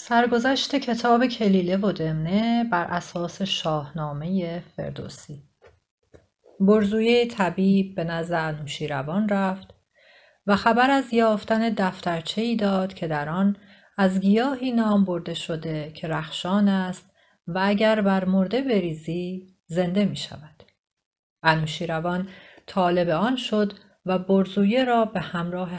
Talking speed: 115 wpm